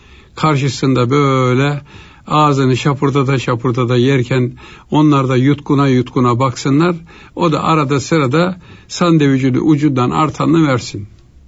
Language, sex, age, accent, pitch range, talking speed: Turkish, male, 60-79, native, 120-165 Hz, 105 wpm